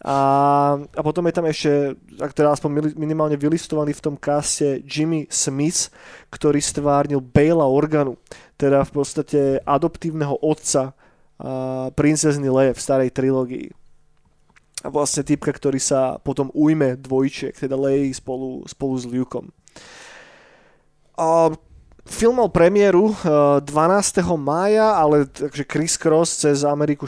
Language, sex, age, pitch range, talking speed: Slovak, male, 20-39, 135-155 Hz, 125 wpm